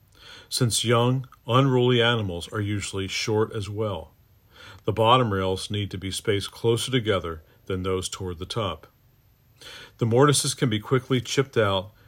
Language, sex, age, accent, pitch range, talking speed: English, male, 50-69, American, 100-120 Hz, 150 wpm